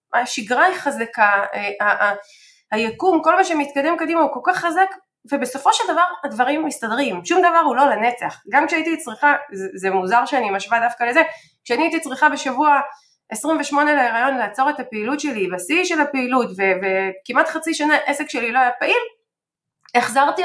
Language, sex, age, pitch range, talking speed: Hebrew, female, 20-39, 225-320 Hz, 165 wpm